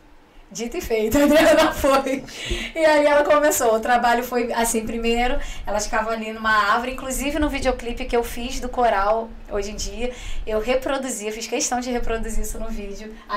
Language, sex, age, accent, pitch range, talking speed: Portuguese, female, 10-29, Brazilian, 230-280 Hz, 185 wpm